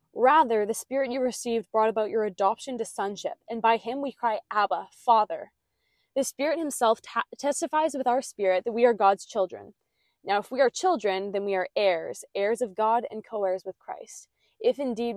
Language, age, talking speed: English, 20-39, 195 wpm